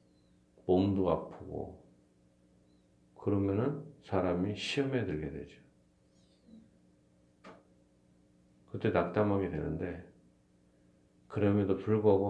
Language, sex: Korean, male